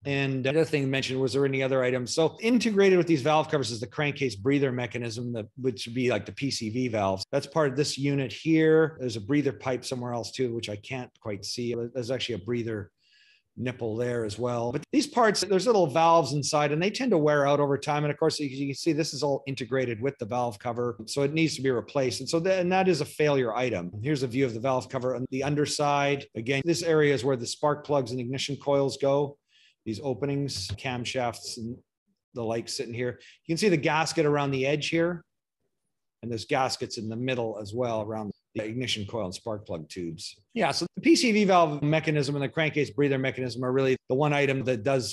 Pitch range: 120-150 Hz